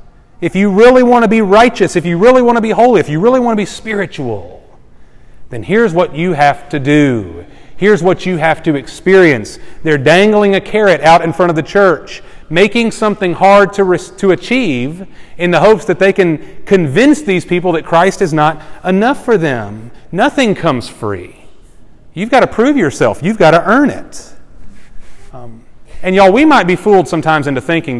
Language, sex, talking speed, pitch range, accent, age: English, male, 195 wpm, 145-195 Hz, American, 30-49